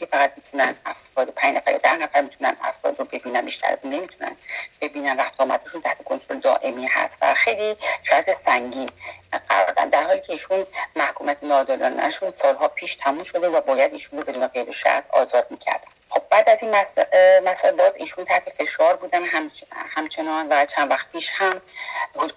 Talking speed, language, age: 155 wpm, English, 40-59